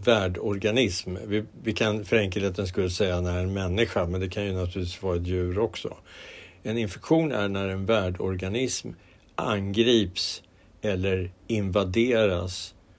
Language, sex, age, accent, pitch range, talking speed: Swedish, male, 60-79, Norwegian, 95-115 Hz, 140 wpm